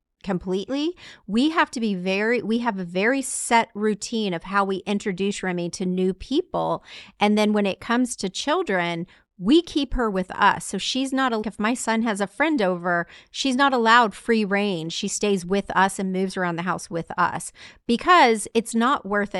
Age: 30-49